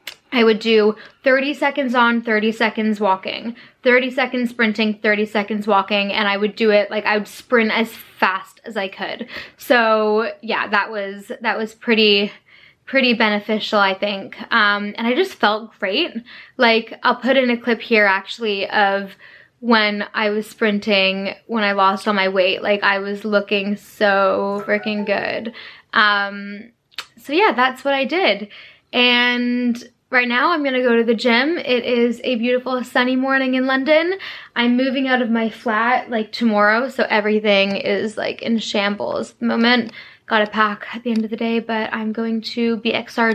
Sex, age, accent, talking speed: female, 10-29, American, 170 wpm